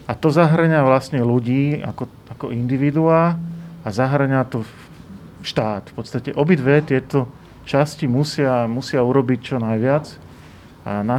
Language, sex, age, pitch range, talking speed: Slovak, male, 40-59, 110-140 Hz, 135 wpm